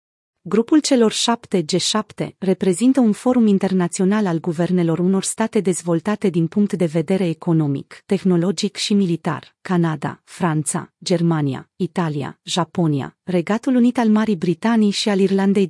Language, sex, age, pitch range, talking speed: Romanian, female, 30-49, 175-215 Hz, 130 wpm